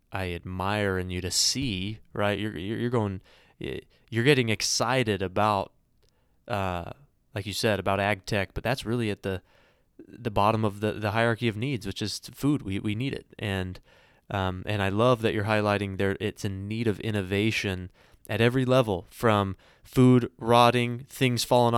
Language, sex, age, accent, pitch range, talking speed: English, male, 20-39, American, 95-120 Hz, 175 wpm